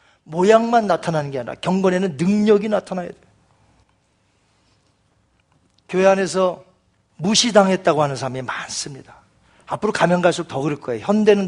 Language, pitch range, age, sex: Korean, 180-285 Hz, 40-59, male